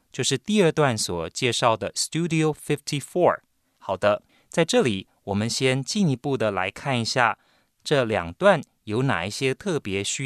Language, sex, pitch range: Chinese, male, 105-150 Hz